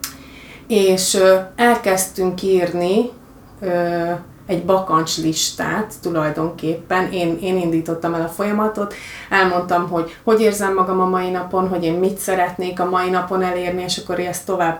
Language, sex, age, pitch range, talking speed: Hungarian, female, 30-49, 165-185 Hz, 140 wpm